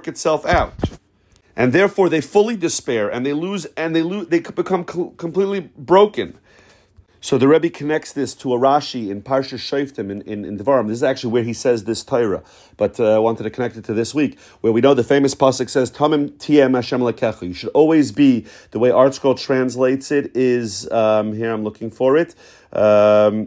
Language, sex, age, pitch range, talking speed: English, male, 40-59, 125-165 Hz, 200 wpm